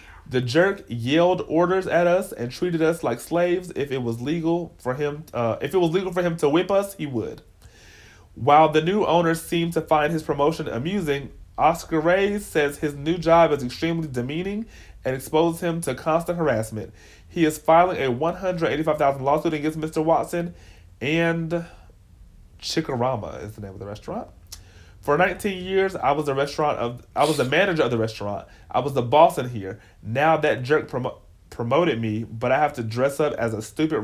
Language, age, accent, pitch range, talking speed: English, 30-49, American, 110-160 Hz, 195 wpm